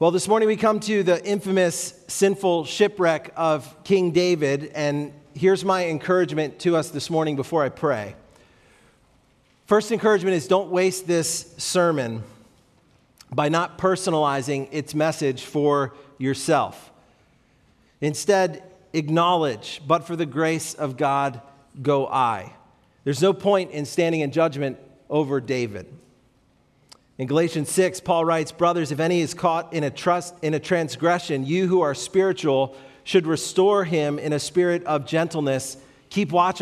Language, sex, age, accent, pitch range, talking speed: English, male, 40-59, American, 145-180 Hz, 145 wpm